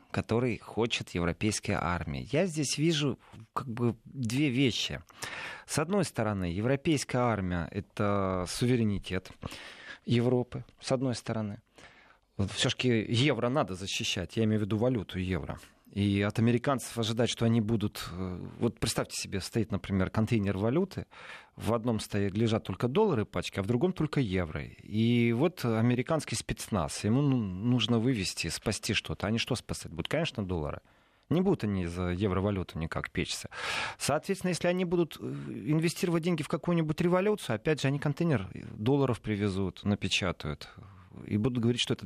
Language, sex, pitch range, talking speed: Russian, male, 100-135 Hz, 145 wpm